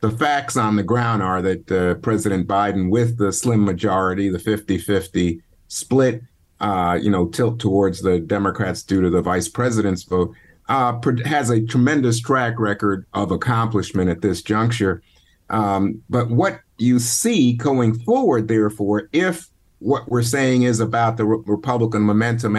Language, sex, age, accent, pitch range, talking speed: English, male, 50-69, American, 95-120 Hz, 150 wpm